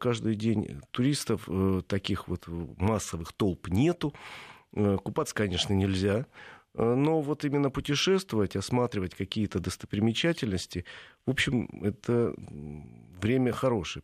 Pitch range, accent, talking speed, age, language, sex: 90-120 Hz, native, 100 wpm, 40-59, Russian, male